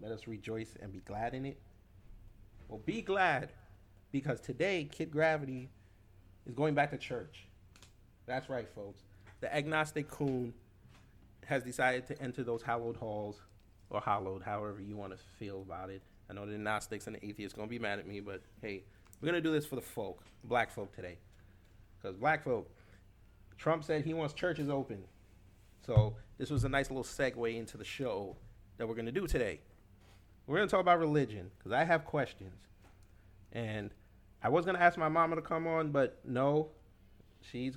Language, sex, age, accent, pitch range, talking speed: English, male, 30-49, American, 100-140 Hz, 185 wpm